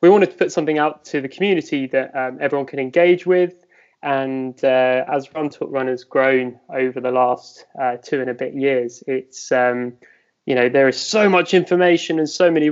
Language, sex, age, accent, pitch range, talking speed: English, male, 20-39, British, 130-150 Hz, 205 wpm